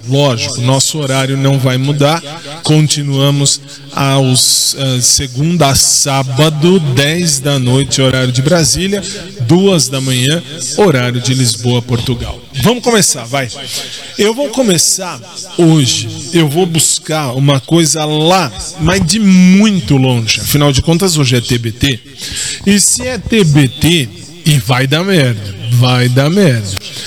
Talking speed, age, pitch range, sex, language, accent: 125 wpm, 20-39, 130-180 Hz, male, Portuguese, Brazilian